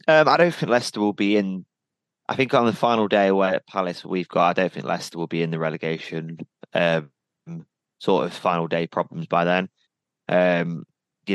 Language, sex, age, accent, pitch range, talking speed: English, male, 20-39, British, 85-115 Hz, 195 wpm